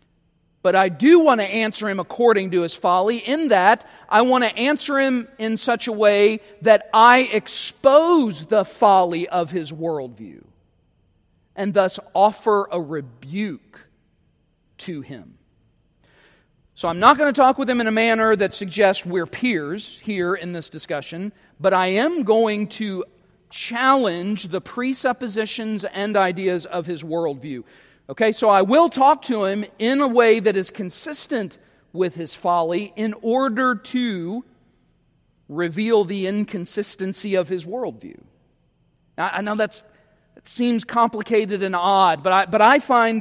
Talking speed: 150 wpm